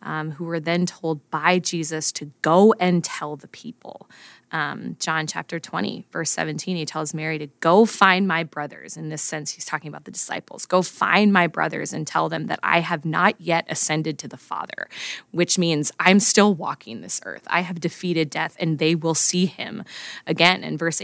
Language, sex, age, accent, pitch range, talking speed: English, female, 20-39, American, 155-185 Hz, 200 wpm